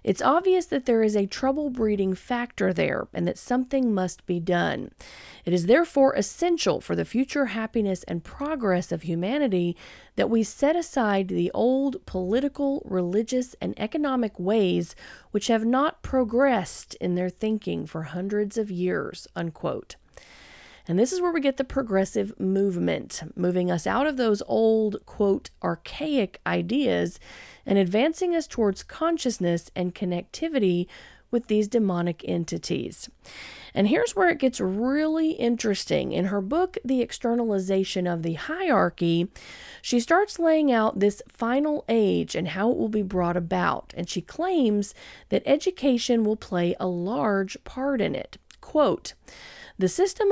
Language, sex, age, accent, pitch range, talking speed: English, female, 40-59, American, 185-275 Hz, 145 wpm